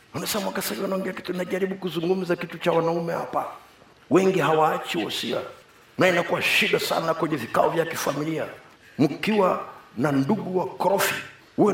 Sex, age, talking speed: male, 50-69, 140 wpm